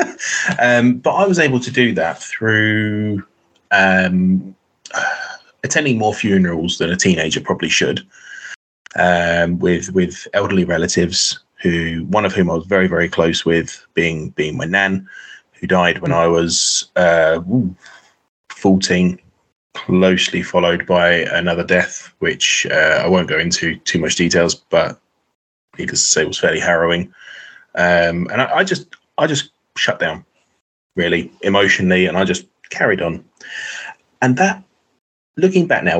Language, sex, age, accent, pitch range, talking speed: English, male, 20-39, British, 85-115 Hz, 140 wpm